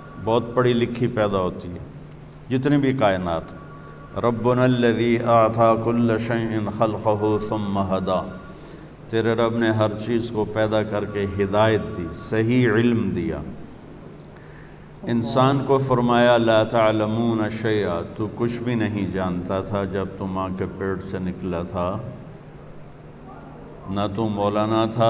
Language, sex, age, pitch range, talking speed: Urdu, male, 50-69, 105-120 Hz, 120 wpm